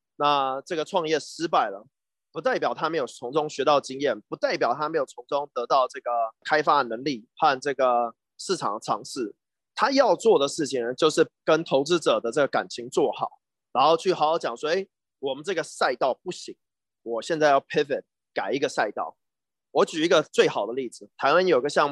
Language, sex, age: Chinese, male, 30-49